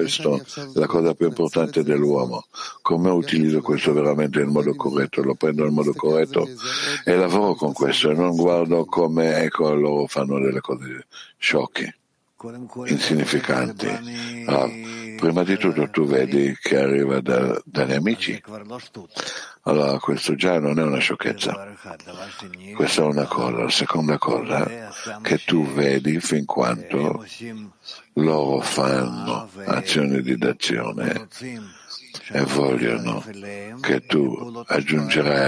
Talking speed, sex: 120 wpm, male